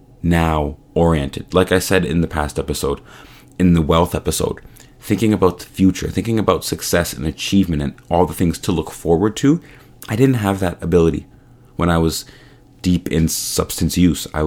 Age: 30-49